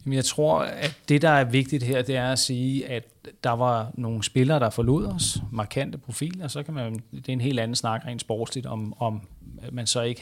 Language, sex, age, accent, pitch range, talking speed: Danish, male, 30-49, native, 115-140 Hz, 225 wpm